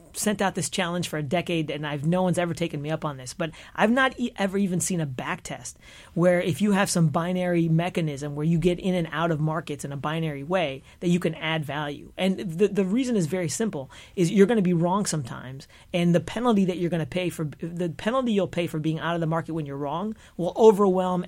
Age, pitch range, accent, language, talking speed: 40-59, 155-190 Hz, American, English, 250 wpm